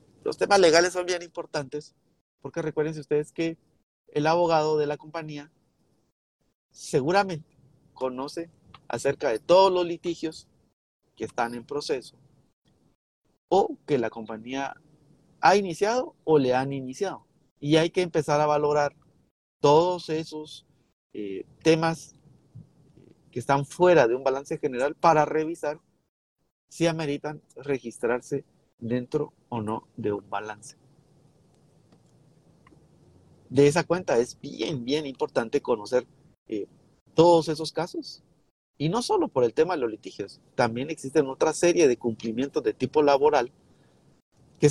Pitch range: 125-160 Hz